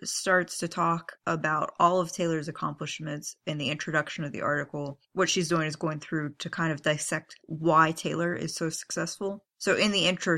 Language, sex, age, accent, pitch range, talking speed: English, female, 20-39, American, 155-185 Hz, 190 wpm